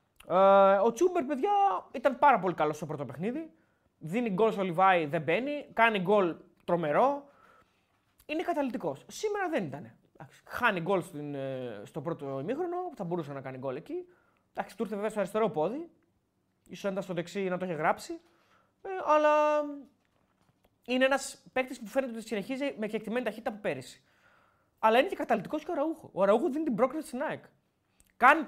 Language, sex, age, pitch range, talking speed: Greek, male, 20-39, 165-265 Hz, 170 wpm